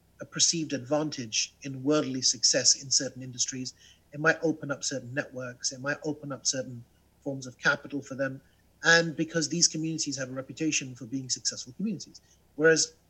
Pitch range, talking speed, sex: 130-165 Hz, 170 wpm, male